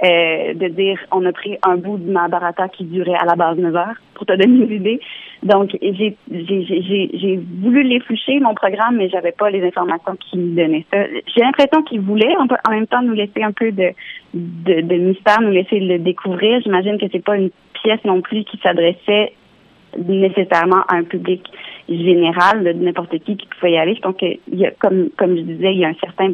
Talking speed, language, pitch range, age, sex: 210 wpm, French, 180-215 Hz, 30-49, female